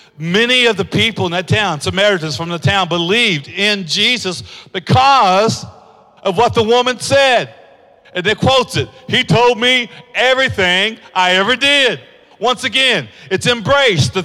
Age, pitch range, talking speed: 50-69, 175-235 Hz, 150 wpm